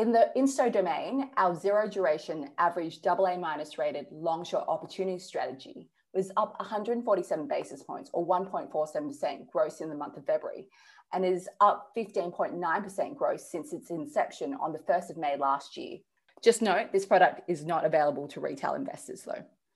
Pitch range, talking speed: 160-215 Hz, 160 wpm